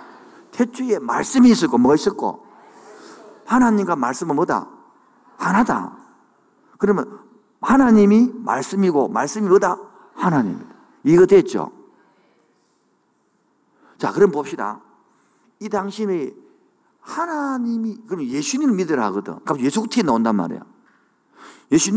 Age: 50-69